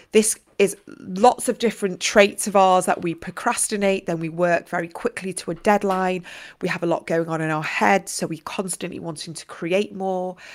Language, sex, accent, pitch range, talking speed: English, female, British, 175-205 Hz, 200 wpm